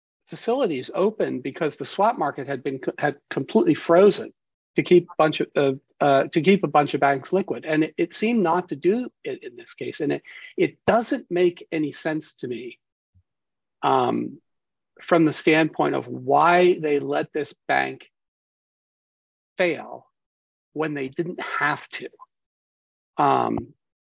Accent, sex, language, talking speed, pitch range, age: American, male, English, 155 wpm, 125-180 Hz, 40-59